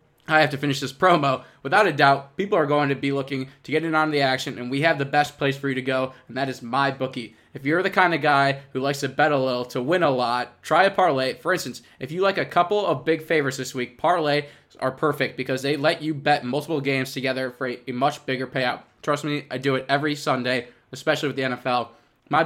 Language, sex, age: English, male, 20-39